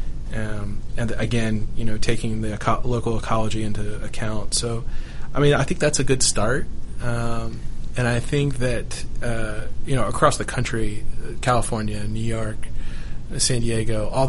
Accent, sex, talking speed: American, male, 155 wpm